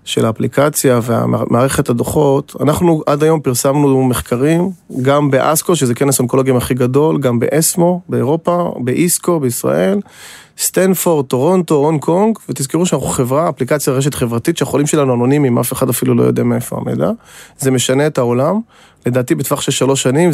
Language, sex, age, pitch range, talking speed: Hebrew, male, 30-49, 125-160 Hz, 150 wpm